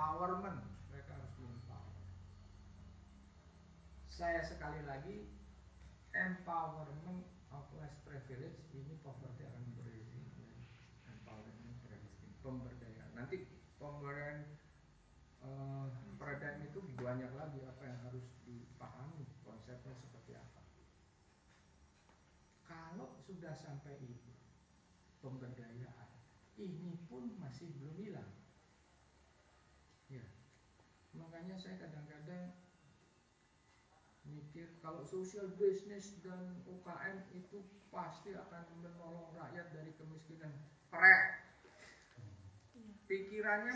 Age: 40-59